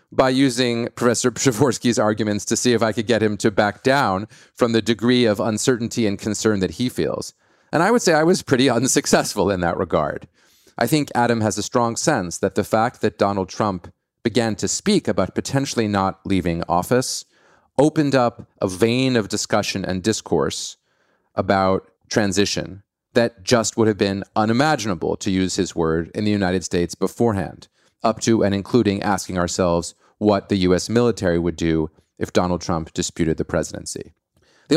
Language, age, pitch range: English, 30-49, 95-120 Hz